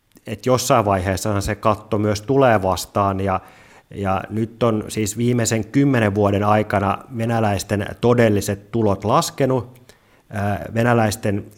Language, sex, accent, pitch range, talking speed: Finnish, male, native, 105-115 Hz, 115 wpm